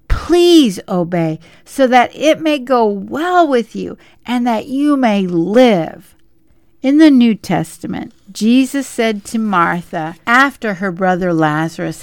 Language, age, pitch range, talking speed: English, 60-79, 175-260 Hz, 135 wpm